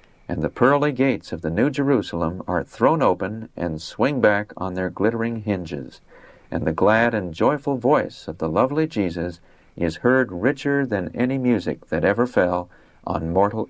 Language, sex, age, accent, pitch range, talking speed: English, male, 50-69, American, 90-130 Hz, 170 wpm